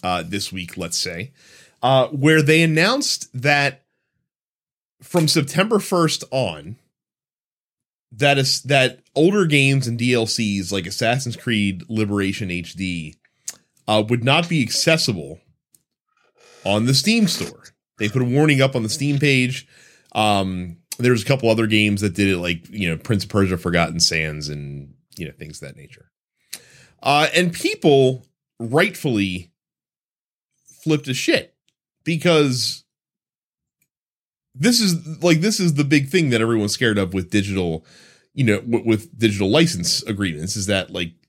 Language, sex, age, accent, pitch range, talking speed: English, male, 30-49, American, 100-145 Hz, 145 wpm